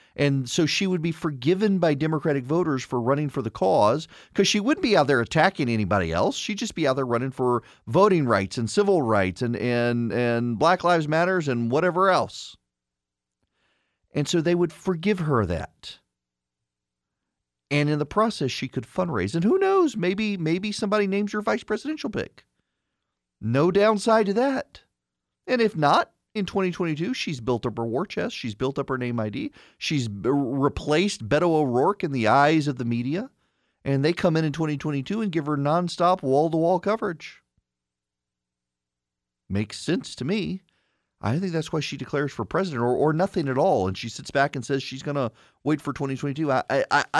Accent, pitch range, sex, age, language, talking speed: American, 120-180 Hz, male, 40-59, English, 180 wpm